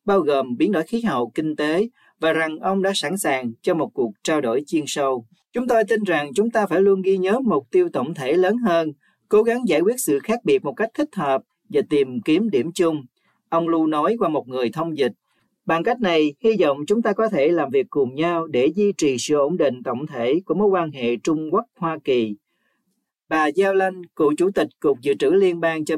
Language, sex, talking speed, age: Vietnamese, male, 235 wpm, 40-59